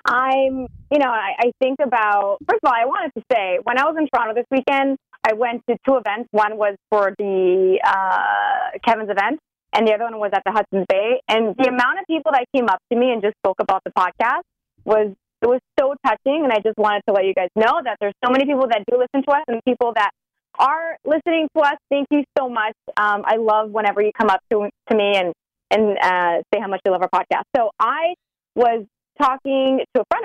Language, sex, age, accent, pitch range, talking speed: English, female, 20-39, American, 195-260 Hz, 240 wpm